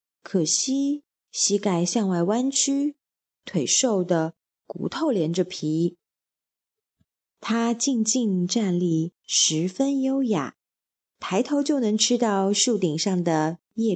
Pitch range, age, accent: 180-250 Hz, 20-39, native